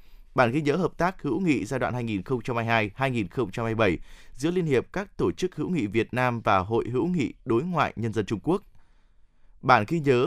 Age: 20-39